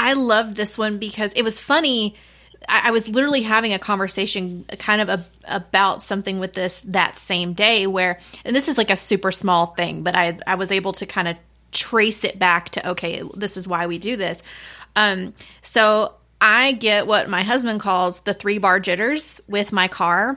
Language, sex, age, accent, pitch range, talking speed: English, female, 20-39, American, 195-230 Hz, 195 wpm